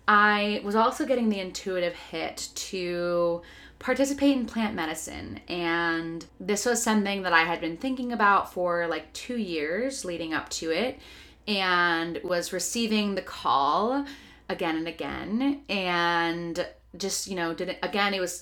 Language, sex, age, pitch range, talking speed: English, female, 20-39, 170-215 Hz, 150 wpm